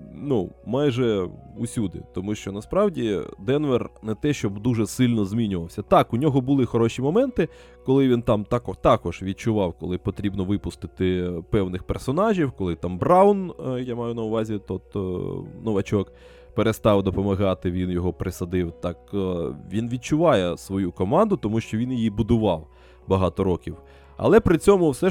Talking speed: 140 wpm